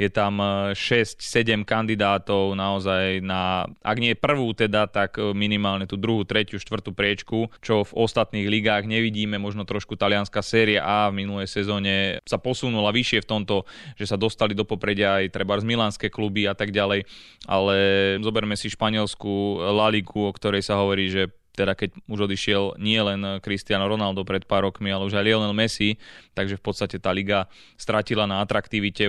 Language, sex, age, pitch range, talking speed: Slovak, male, 20-39, 100-110 Hz, 165 wpm